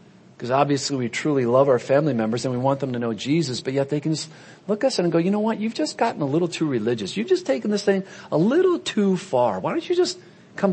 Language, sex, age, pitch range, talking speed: English, male, 40-59, 155-200 Hz, 275 wpm